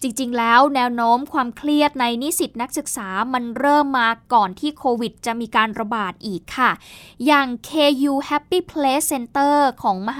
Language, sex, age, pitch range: Thai, female, 20-39, 230-295 Hz